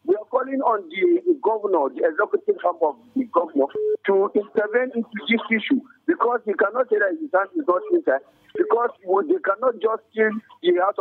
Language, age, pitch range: English, 50-69, 195-325 Hz